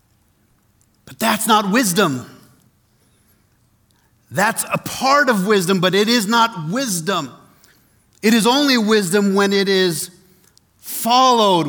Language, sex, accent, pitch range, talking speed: English, male, American, 125-200 Hz, 115 wpm